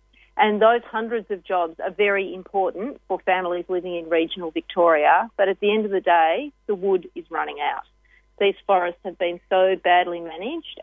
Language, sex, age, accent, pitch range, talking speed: English, female, 40-59, Australian, 175-210 Hz, 185 wpm